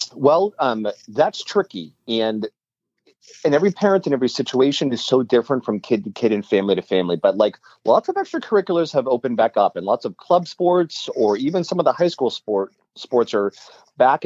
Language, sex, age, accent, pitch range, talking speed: English, male, 40-59, American, 115-170 Hz, 200 wpm